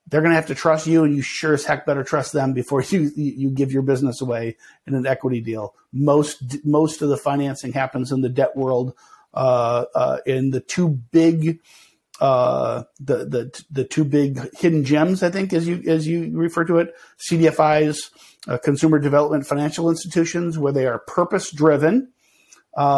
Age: 50-69